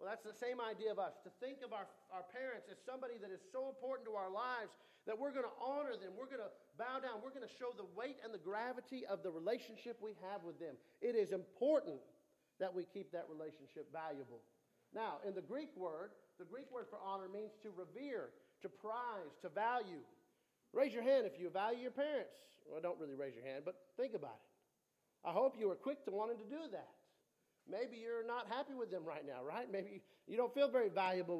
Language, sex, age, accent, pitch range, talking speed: English, male, 40-59, American, 175-250 Hz, 225 wpm